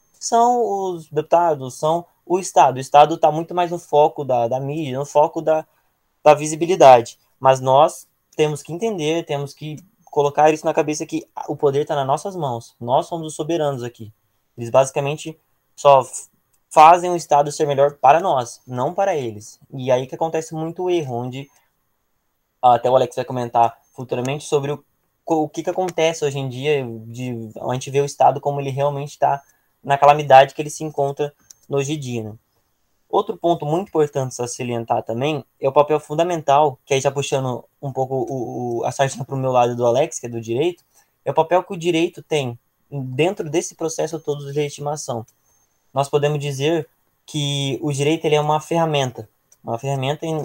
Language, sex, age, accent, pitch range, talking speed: Portuguese, male, 20-39, Brazilian, 130-155 Hz, 185 wpm